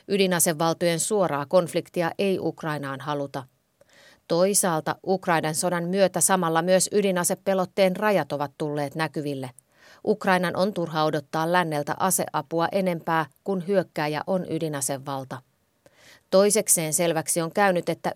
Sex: female